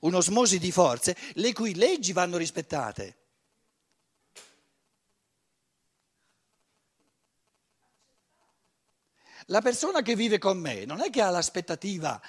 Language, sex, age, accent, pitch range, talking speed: Italian, male, 50-69, native, 150-210 Hz, 100 wpm